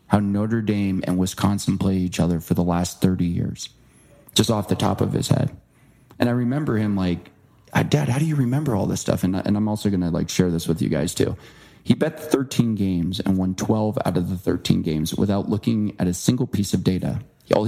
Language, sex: English, male